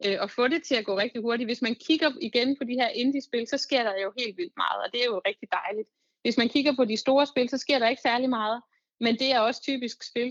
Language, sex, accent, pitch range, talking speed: Danish, female, native, 195-245 Hz, 280 wpm